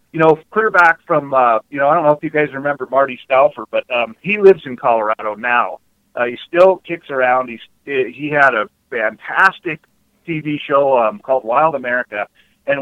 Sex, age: male, 40-59